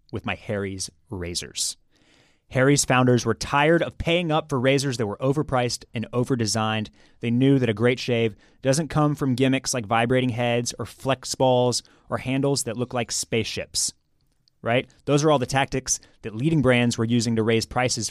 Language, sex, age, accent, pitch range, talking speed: English, male, 30-49, American, 120-150 Hz, 180 wpm